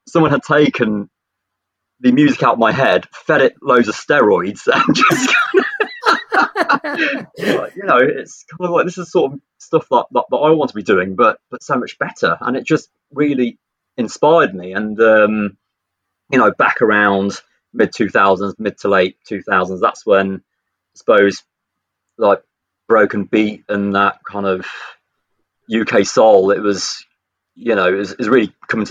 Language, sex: English, male